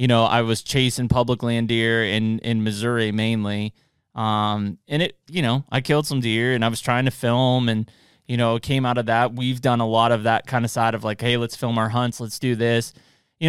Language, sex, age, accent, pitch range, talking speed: English, male, 20-39, American, 115-130 Hz, 240 wpm